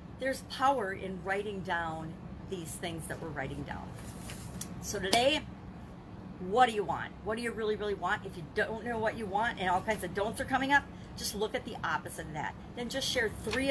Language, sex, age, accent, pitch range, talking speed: English, female, 50-69, American, 190-225 Hz, 215 wpm